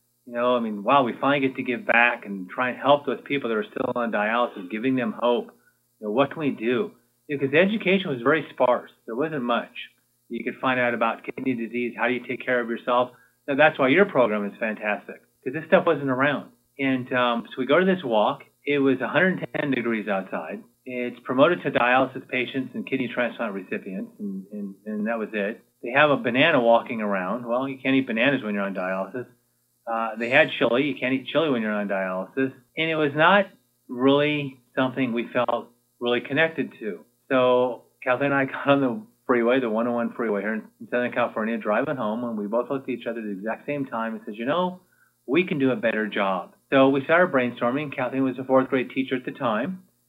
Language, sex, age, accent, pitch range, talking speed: English, male, 30-49, American, 120-135 Hz, 220 wpm